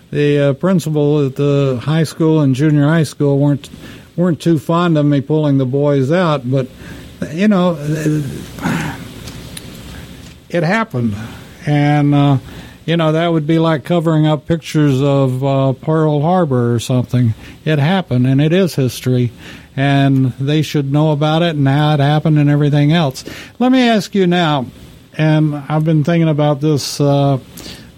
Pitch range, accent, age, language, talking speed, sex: 135-165 Hz, American, 60-79, English, 160 wpm, male